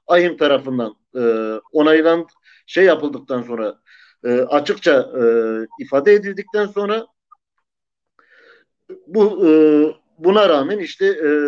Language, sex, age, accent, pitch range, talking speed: Turkish, male, 50-69, native, 155-220 Hz, 100 wpm